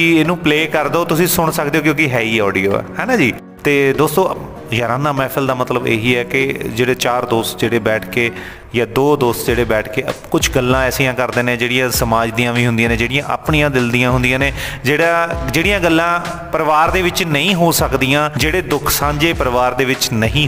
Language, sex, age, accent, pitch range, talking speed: Hindi, male, 30-49, native, 125-155 Hz, 150 wpm